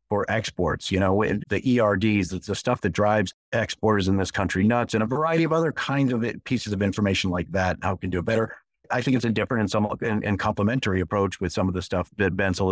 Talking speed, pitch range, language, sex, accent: 235 wpm, 95-115 Hz, English, male, American